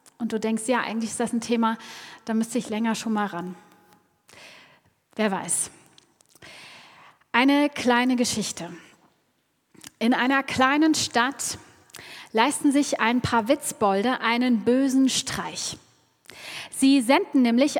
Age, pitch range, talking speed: 30-49, 210-265 Hz, 120 wpm